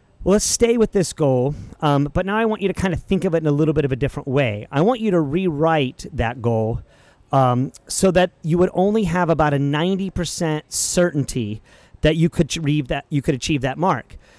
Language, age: English, 40-59